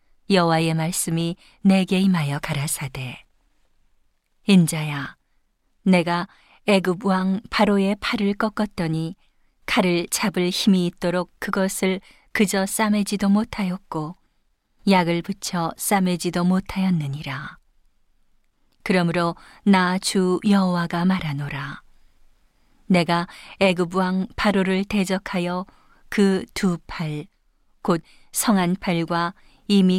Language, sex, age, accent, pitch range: Korean, female, 40-59, native, 165-195 Hz